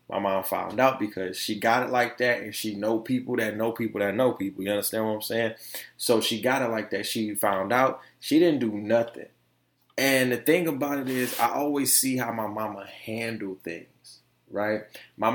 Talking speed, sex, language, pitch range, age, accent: 210 wpm, male, English, 115-170 Hz, 20-39, American